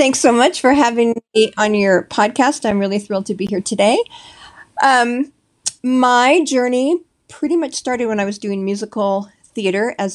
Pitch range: 180-230 Hz